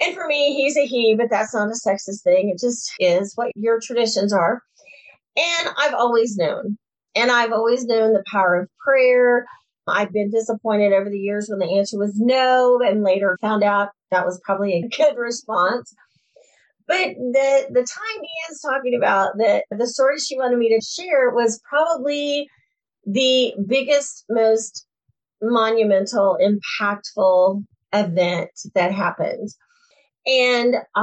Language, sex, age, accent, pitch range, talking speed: English, female, 30-49, American, 195-260 Hz, 155 wpm